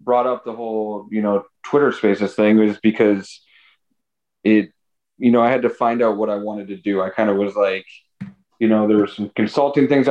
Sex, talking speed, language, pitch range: male, 215 wpm, English, 100-115 Hz